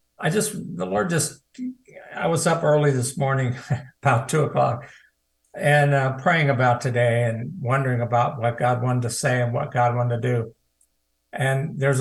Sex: male